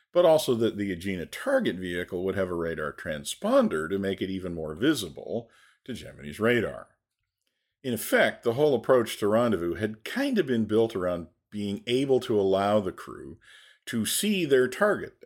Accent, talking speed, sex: American, 175 wpm, male